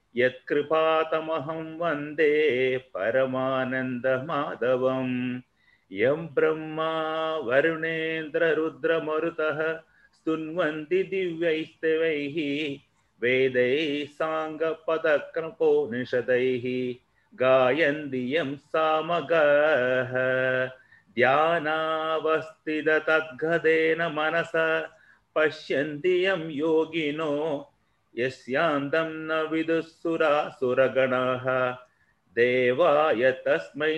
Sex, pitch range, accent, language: male, 130-160 Hz, native, Tamil